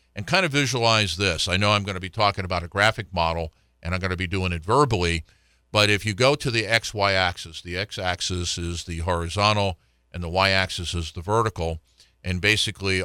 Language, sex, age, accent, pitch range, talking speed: English, male, 50-69, American, 90-110 Hz, 220 wpm